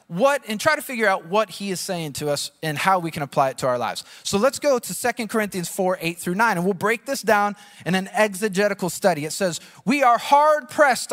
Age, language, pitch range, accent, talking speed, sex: 20-39, English, 200-270 Hz, American, 245 wpm, male